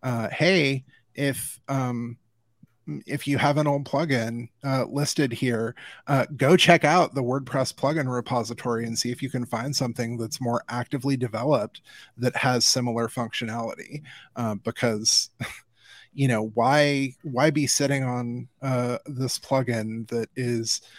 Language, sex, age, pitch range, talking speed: English, male, 30-49, 120-140 Hz, 145 wpm